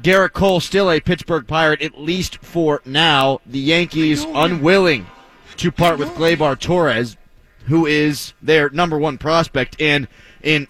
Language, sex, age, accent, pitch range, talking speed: English, male, 30-49, American, 140-185 Hz, 145 wpm